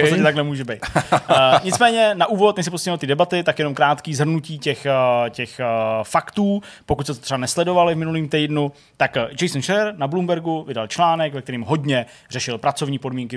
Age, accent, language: 20-39, native, Czech